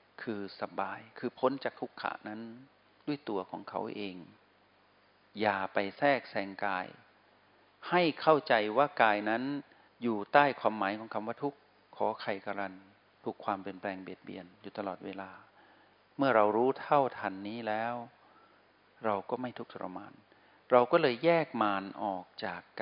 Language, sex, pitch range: Thai, male, 100-130 Hz